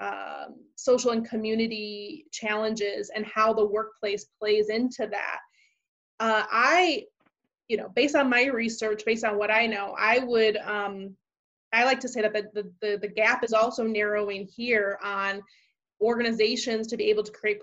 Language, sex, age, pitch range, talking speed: English, female, 20-39, 210-235 Hz, 165 wpm